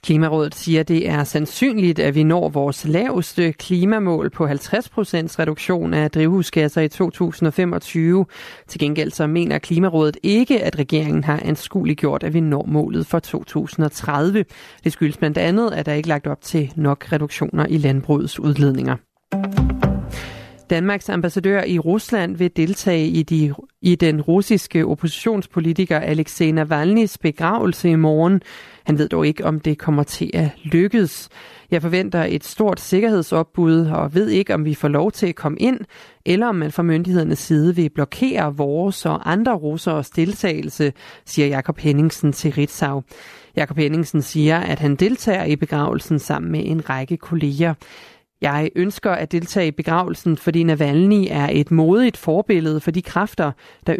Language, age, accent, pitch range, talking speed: Danish, 30-49, native, 150-180 Hz, 160 wpm